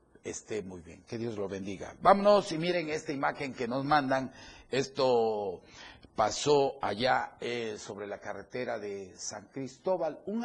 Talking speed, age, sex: 150 wpm, 40-59, male